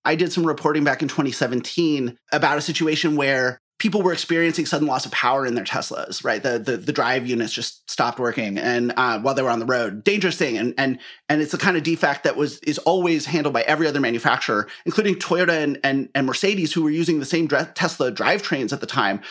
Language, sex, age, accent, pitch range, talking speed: English, male, 30-49, American, 145-195 Hz, 230 wpm